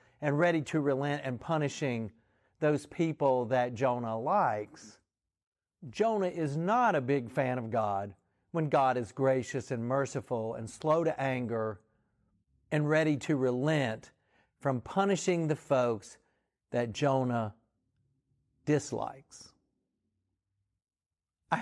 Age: 50-69